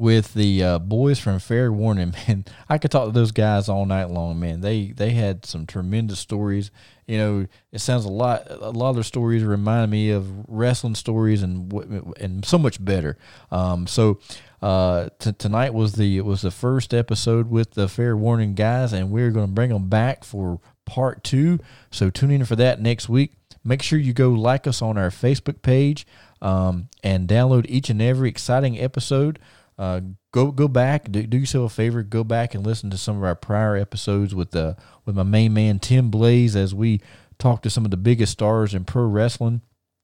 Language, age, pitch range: English, 40-59, 100-120 Hz